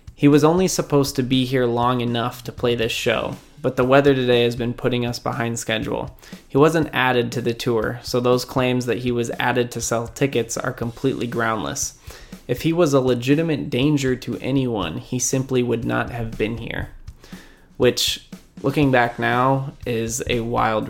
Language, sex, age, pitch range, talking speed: English, male, 20-39, 115-135 Hz, 185 wpm